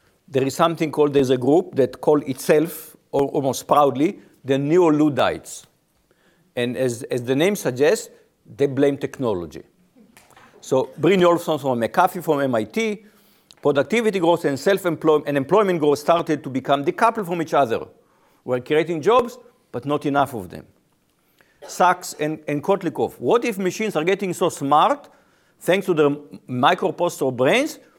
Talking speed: 150 wpm